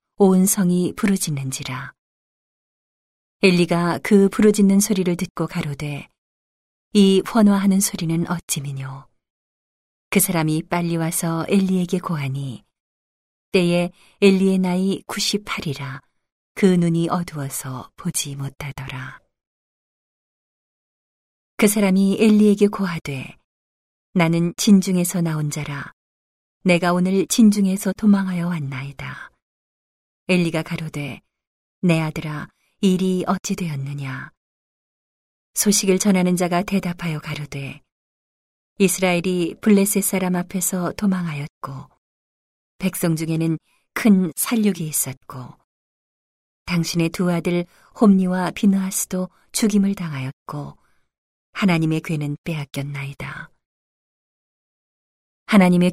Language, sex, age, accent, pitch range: Korean, female, 40-59, native, 150-195 Hz